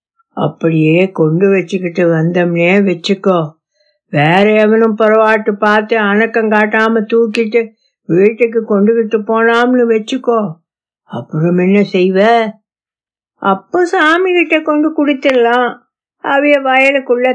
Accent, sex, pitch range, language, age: native, female, 180-260 Hz, Tamil, 60-79